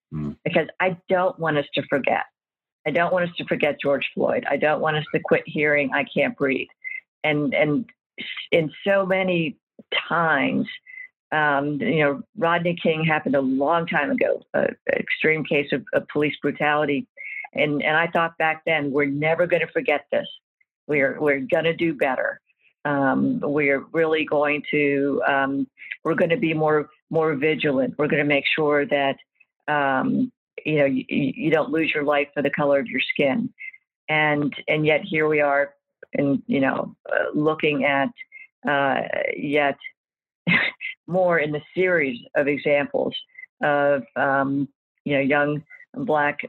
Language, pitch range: English, 145-170 Hz